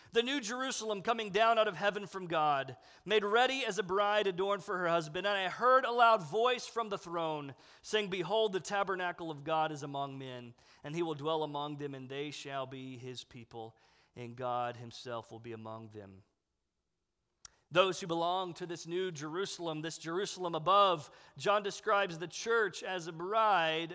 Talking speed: 185 wpm